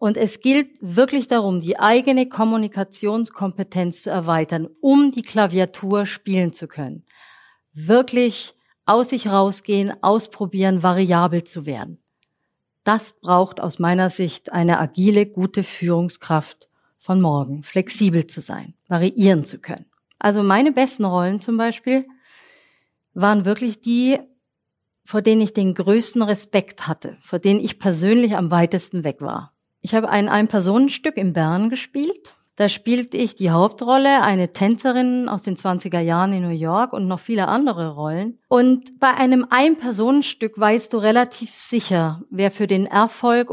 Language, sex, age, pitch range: German, female, 40-59, 185-235 Hz